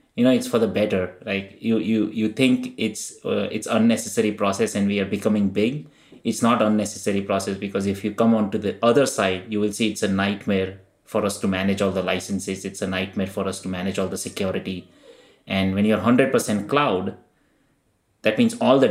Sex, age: male, 30-49